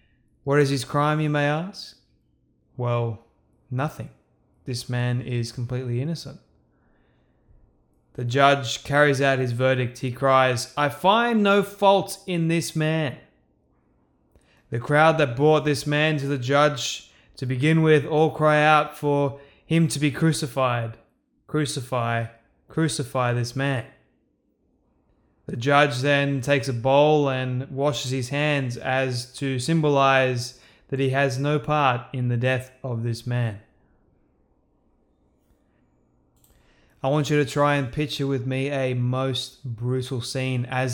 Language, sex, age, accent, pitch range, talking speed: English, male, 20-39, Australian, 120-145 Hz, 135 wpm